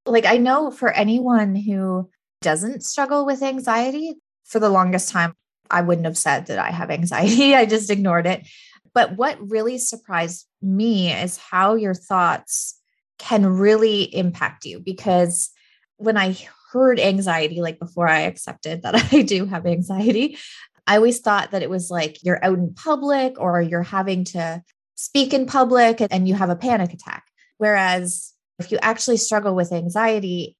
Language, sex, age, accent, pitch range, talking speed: English, female, 20-39, American, 175-225 Hz, 165 wpm